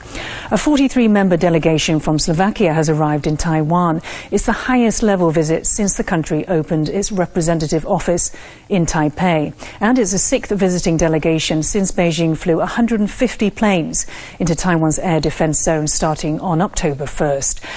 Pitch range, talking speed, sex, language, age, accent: 165-200 Hz, 140 wpm, female, English, 40-59, British